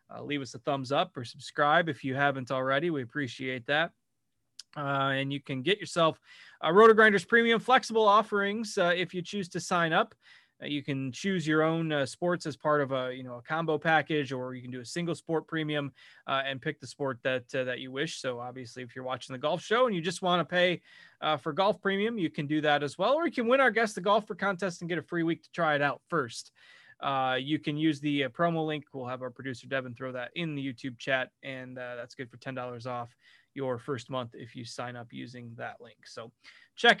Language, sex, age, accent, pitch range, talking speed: English, male, 20-39, American, 135-190 Hz, 250 wpm